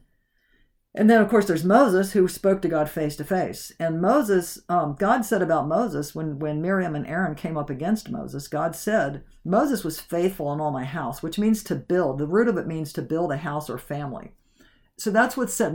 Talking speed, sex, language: 215 wpm, female, English